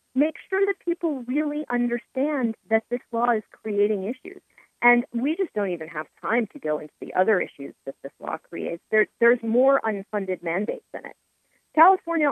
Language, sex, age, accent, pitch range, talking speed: English, female, 40-59, American, 185-290 Hz, 175 wpm